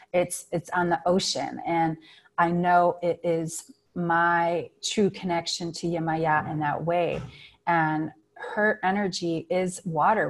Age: 30-49